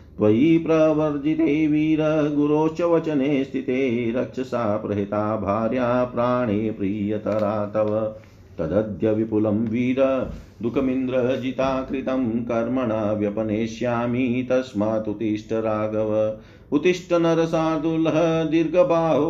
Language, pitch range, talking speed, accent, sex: Hindi, 105-130 Hz, 70 wpm, native, male